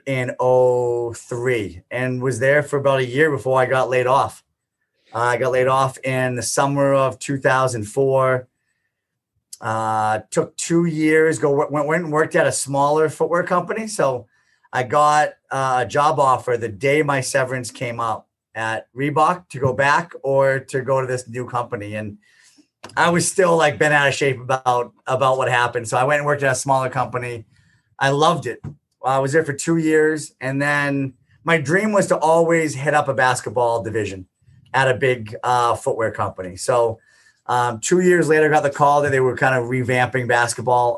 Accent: American